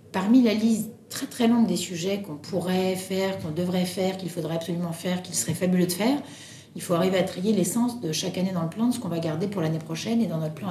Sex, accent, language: female, French, French